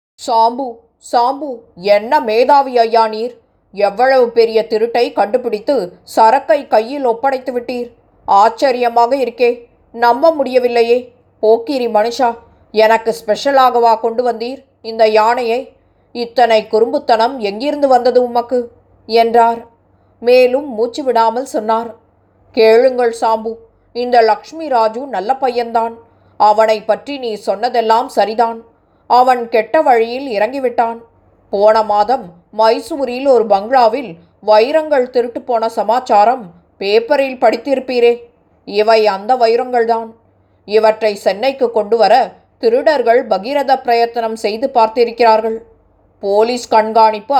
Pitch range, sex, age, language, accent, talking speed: 225-255 Hz, female, 20-39, Tamil, native, 95 wpm